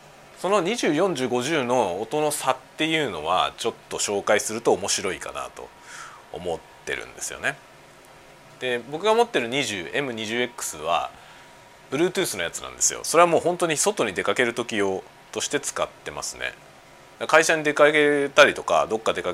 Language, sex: Japanese, male